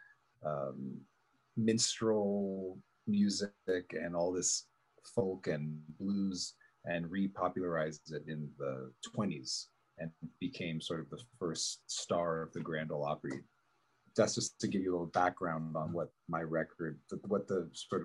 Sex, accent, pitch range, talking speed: male, American, 90-110 Hz, 140 wpm